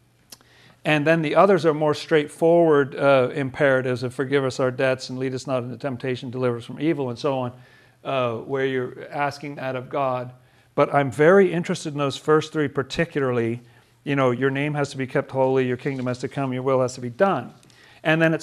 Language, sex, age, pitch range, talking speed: English, male, 40-59, 125-150 Hz, 215 wpm